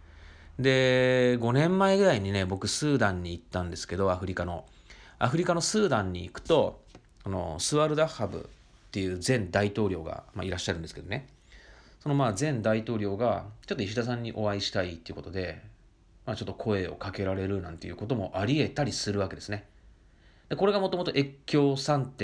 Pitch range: 95-135 Hz